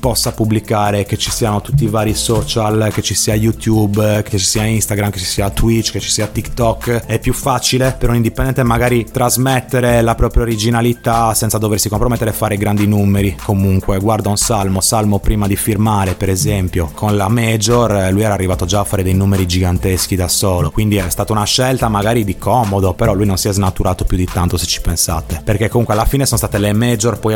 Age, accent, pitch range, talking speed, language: 30-49, native, 100-115 Hz, 210 wpm, Italian